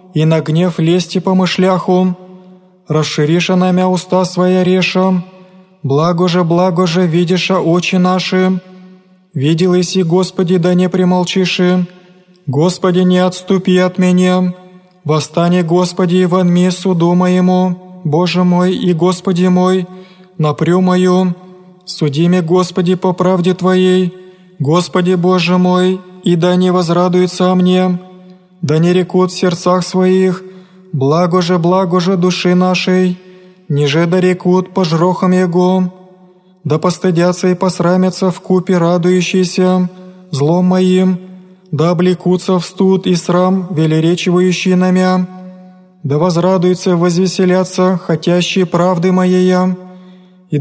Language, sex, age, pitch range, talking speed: Greek, male, 20-39, 180-185 Hz, 115 wpm